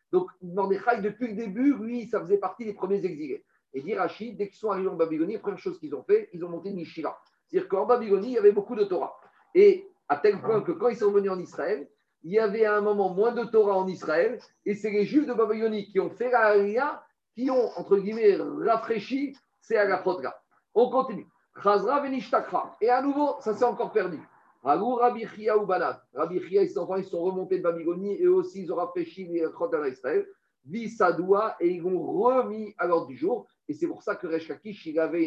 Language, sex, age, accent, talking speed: French, male, 50-69, French, 225 wpm